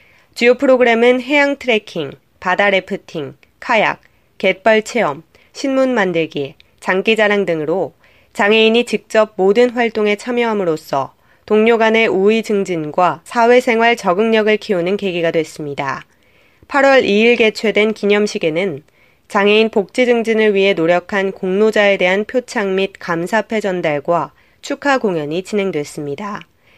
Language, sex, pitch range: Korean, female, 185-230 Hz